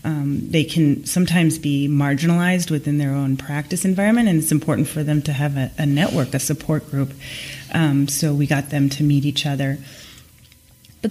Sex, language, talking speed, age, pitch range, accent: female, English, 185 wpm, 30-49, 140-160 Hz, American